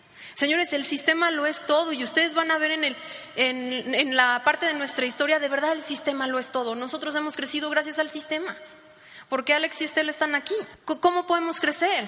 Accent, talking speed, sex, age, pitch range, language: Mexican, 210 wpm, female, 30-49, 265-355 Hz, Spanish